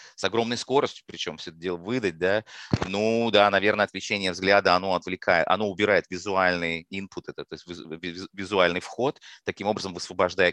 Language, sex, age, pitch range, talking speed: Russian, male, 30-49, 85-110 Hz, 155 wpm